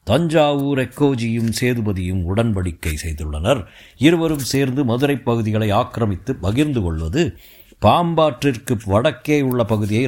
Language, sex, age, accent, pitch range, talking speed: Tamil, male, 60-79, native, 90-125 Hz, 95 wpm